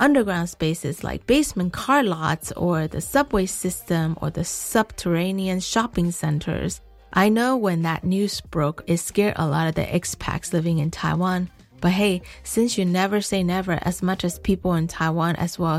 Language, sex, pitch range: Chinese, female, 165-210 Hz